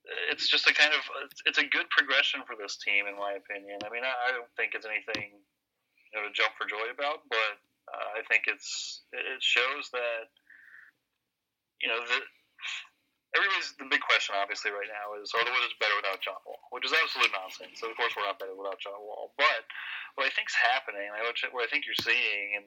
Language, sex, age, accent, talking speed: English, male, 30-49, American, 210 wpm